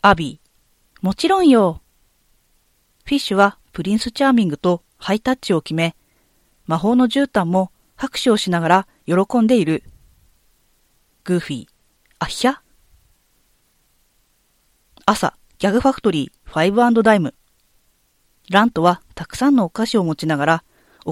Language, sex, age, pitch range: Japanese, female, 40-59, 170-255 Hz